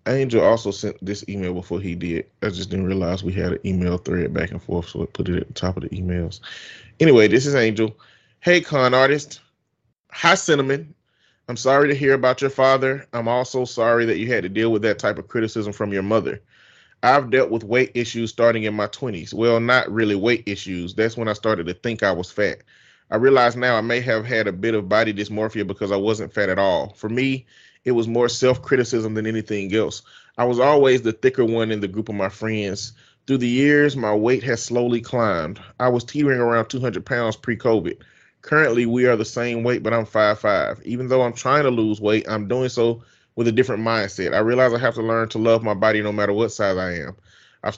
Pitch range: 105-125 Hz